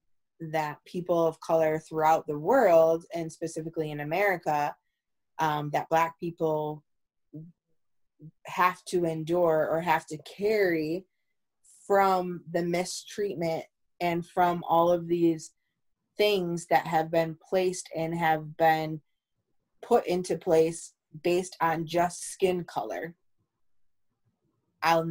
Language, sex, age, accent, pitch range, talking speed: English, female, 20-39, American, 155-180 Hz, 110 wpm